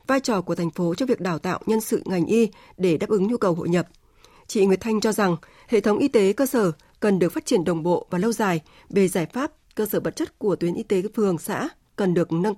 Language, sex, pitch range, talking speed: Vietnamese, female, 185-240 Hz, 265 wpm